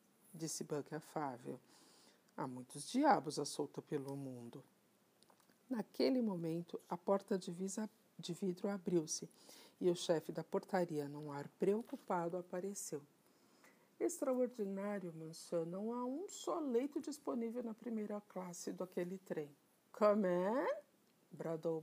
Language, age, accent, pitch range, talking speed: Portuguese, 50-69, Brazilian, 155-210 Hz, 115 wpm